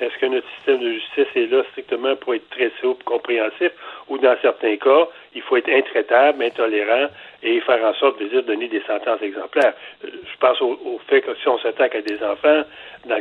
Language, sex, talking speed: French, male, 210 wpm